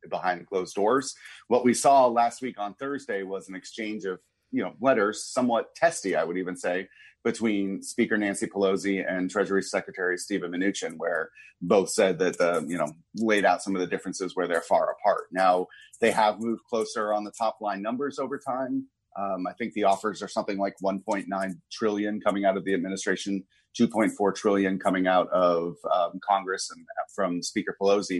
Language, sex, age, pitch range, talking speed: English, male, 30-49, 95-115 Hz, 185 wpm